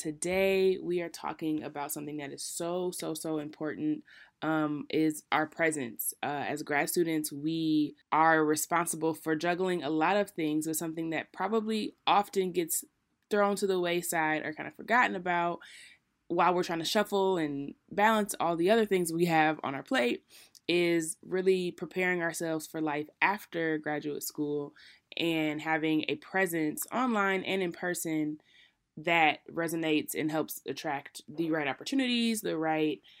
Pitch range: 150-180 Hz